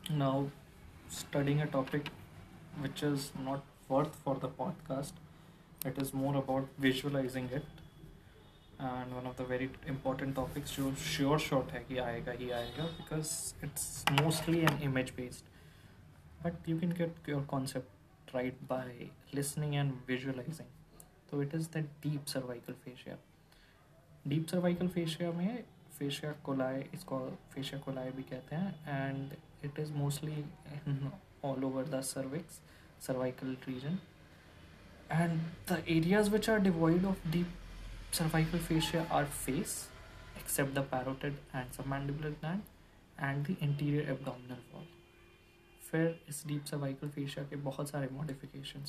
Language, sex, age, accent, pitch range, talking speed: Hindi, male, 20-39, native, 130-155 Hz, 90 wpm